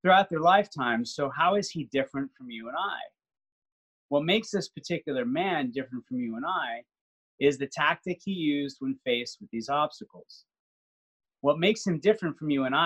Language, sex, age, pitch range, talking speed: English, male, 30-49, 130-185 Hz, 180 wpm